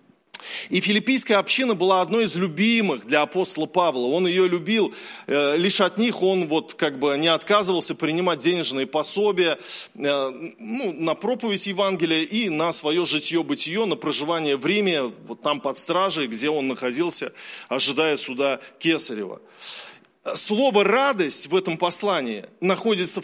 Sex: male